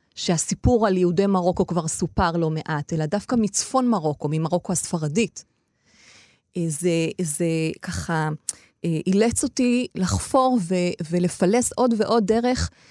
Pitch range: 160-220 Hz